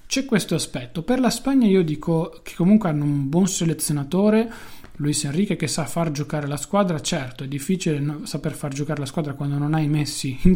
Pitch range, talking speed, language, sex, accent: 145-175 Hz, 205 wpm, Italian, male, native